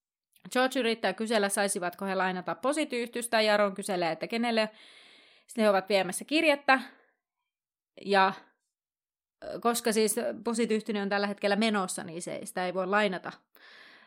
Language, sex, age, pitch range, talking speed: Finnish, female, 30-49, 190-260 Hz, 125 wpm